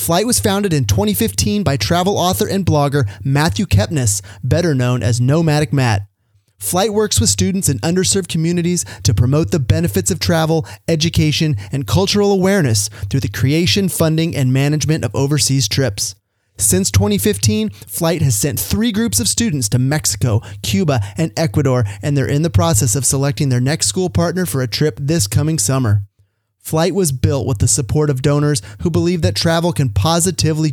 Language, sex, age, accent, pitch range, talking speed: English, male, 30-49, American, 110-160 Hz, 170 wpm